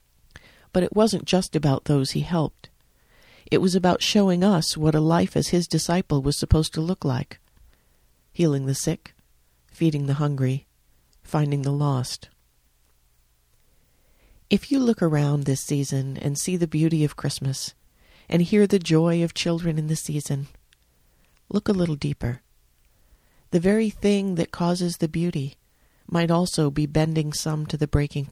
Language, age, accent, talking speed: English, 40-59, American, 155 wpm